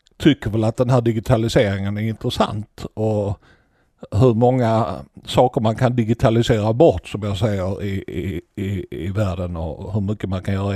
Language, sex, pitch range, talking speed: Danish, male, 95-115 Hz, 160 wpm